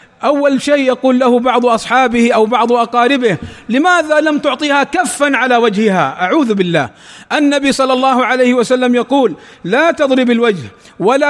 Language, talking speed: Arabic, 145 wpm